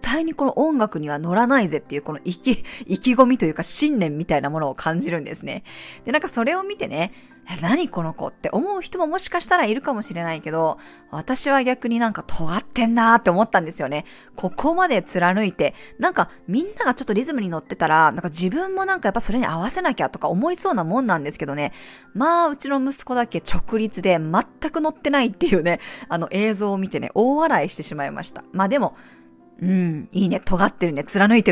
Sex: female